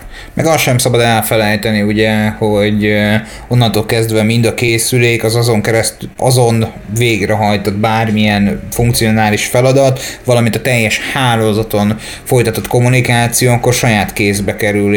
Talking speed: 120 wpm